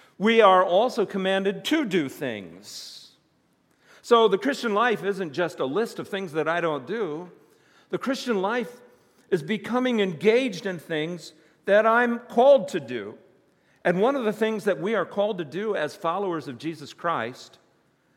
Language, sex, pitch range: English, male, 145-205 Hz